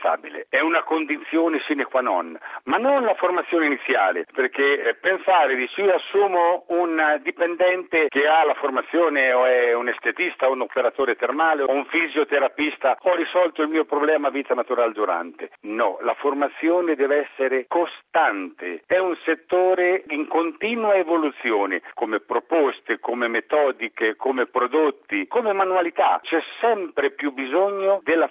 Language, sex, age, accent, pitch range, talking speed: Italian, male, 50-69, native, 135-175 Hz, 140 wpm